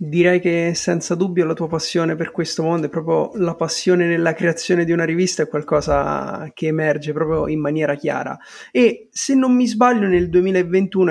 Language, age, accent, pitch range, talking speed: Italian, 30-49, native, 155-180 Hz, 185 wpm